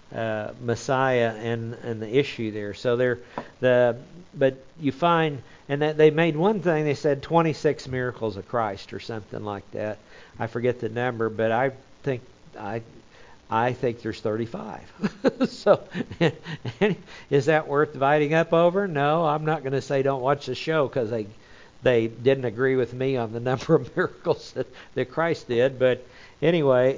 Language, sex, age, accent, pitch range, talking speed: English, male, 60-79, American, 110-135 Hz, 170 wpm